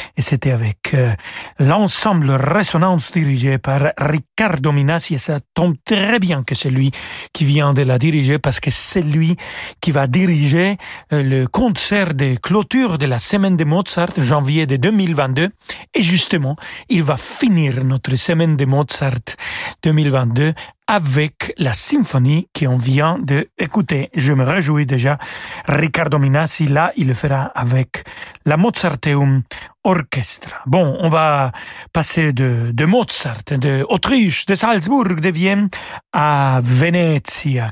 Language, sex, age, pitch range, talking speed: French, male, 40-59, 135-175 Hz, 140 wpm